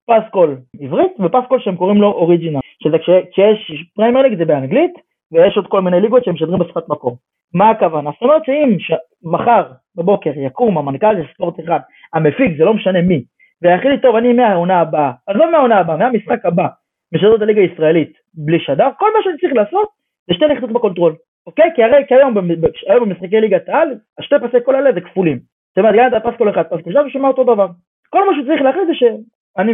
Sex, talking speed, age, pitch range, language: male, 145 wpm, 30-49, 160-240 Hz, Hebrew